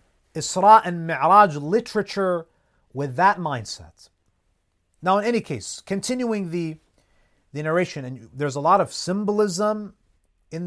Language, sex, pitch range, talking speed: English, male, 125-190 Hz, 125 wpm